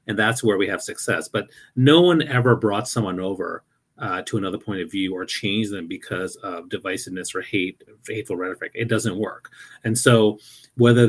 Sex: male